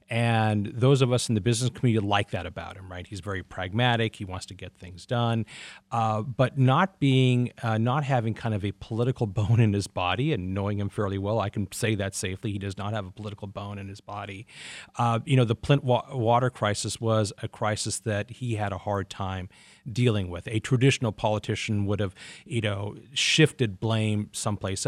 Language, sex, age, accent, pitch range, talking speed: English, male, 40-59, American, 100-120 Hz, 205 wpm